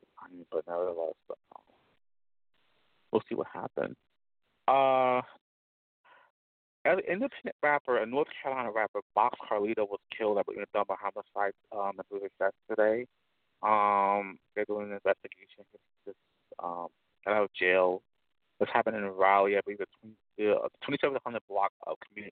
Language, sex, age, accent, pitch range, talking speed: English, male, 30-49, American, 95-110 Hz, 130 wpm